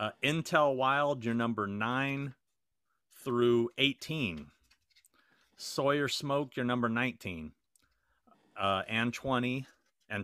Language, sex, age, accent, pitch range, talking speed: English, male, 40-59, American, 110-130 Hz, 100 wpm